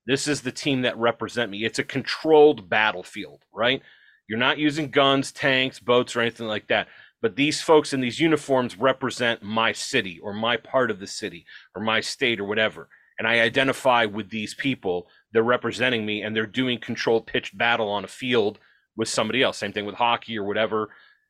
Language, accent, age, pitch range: English, American, 30-49, 115-145 Hz